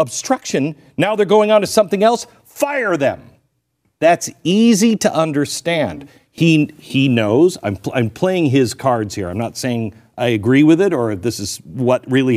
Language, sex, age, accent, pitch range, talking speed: English, male, 50-69, American, 120-195 Hz, 175 wpm